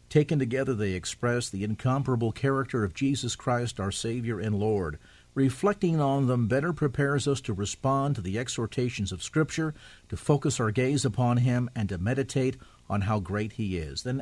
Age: 50-69